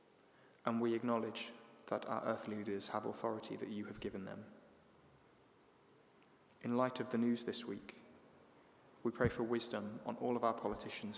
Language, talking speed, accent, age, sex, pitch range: English, 160 wpm, British, 20-39, male, 105-120 Hz